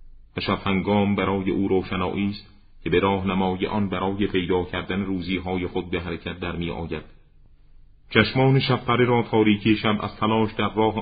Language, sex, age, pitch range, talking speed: Persian, male, 40-59, 90-100 Hz, 160 wpm